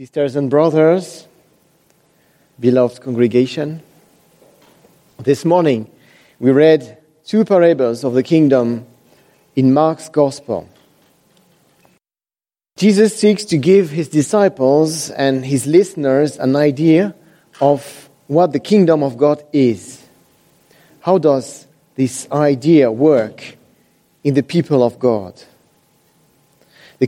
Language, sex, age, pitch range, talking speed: English, male, 40-59, 135-170 Hz, 100 wpm